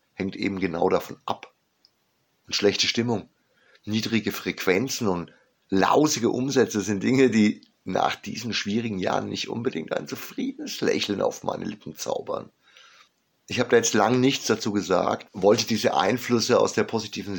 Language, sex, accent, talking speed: German, male, German, 150 wpm